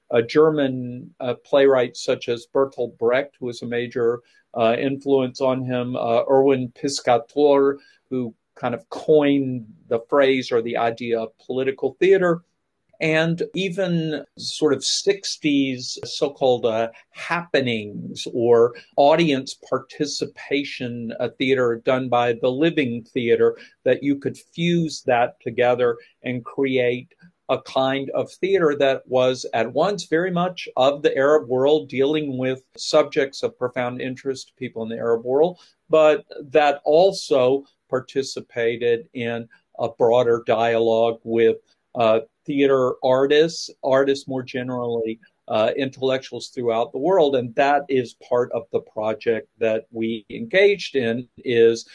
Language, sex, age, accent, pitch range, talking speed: English, male, 50-69, American, 120-150 Hz, 135 wpm